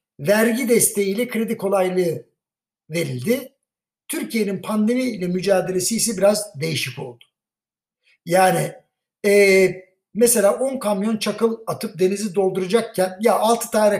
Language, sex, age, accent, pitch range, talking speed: Turkish, male, 60-79, native, 185-240 Hz, 100 wpm